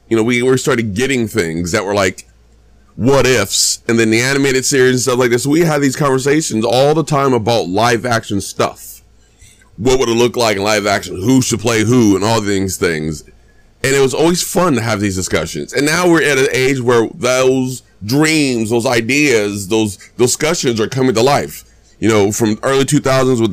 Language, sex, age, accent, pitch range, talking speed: English, male, 30-49, American, 100-125 Hz, 205 wpm